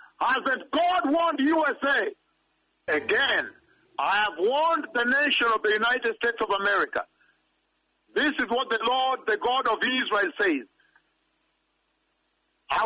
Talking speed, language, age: 130 wpm, English, 50-69